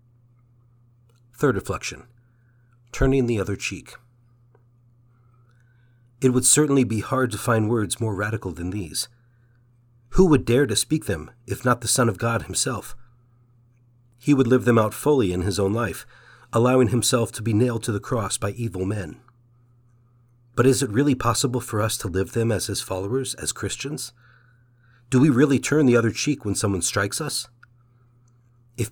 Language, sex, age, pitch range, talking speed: English, male, 40-59, 115-125 Hz, 165 wpm